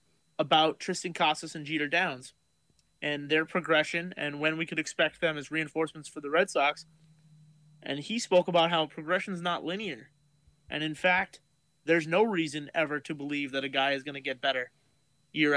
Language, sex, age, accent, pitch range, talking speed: English, male, 30-49, American, 145-170 Hz, 185 wpm